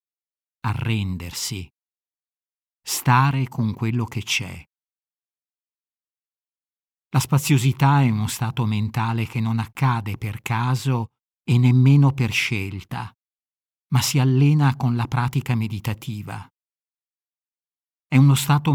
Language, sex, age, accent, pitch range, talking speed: Italian, male, 50-69, native, 110-140 Hz, 100 wpm